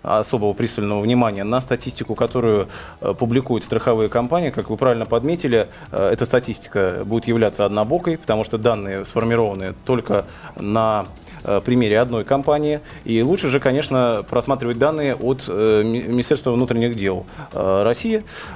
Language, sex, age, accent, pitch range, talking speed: Russian, male, 20-39, native, 105-135 Hz, 125 wpm